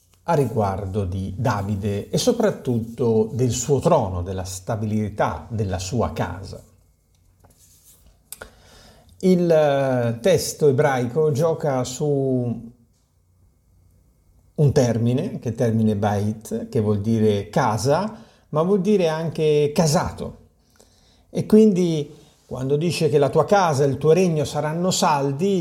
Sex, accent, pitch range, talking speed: male, native, 105-165 Hz, 110 wpm